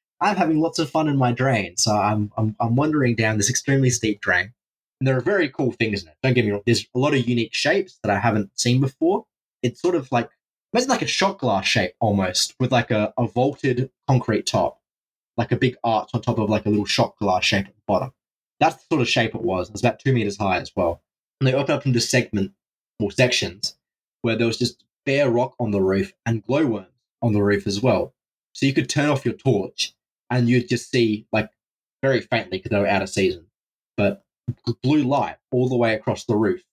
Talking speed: 235 wpm